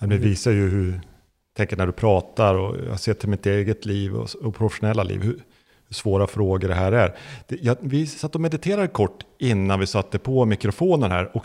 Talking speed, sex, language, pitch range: 195 wpm, male, Swedish, 95-130 Hz